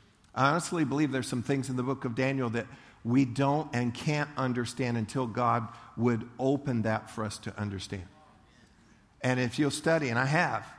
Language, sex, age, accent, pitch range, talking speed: English, male, 50-69, American, 115-140 Hz, 185 wpm